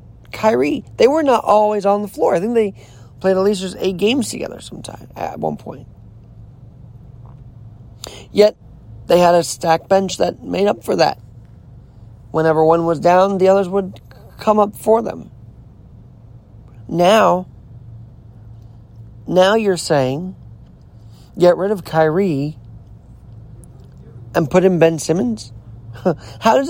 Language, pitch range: English, 115-185 Hz